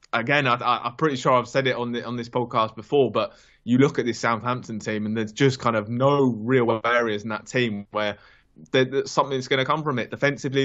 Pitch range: 110-125 Hz